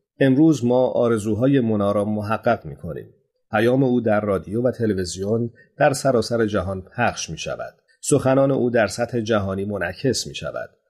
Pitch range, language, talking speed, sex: 105-130 Hz, Persian, 140 wpm, male